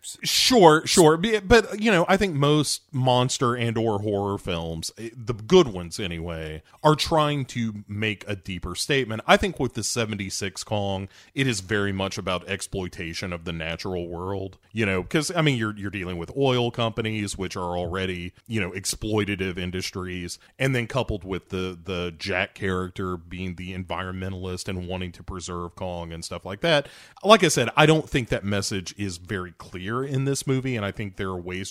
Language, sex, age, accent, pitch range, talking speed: English, male, 30-49, American, 90-120 Hz, 185 wpm